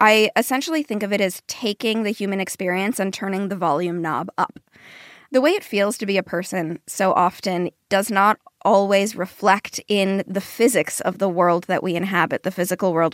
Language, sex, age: English, female, 20-39